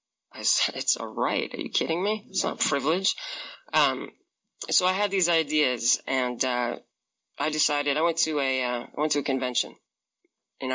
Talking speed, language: 190 wpm, English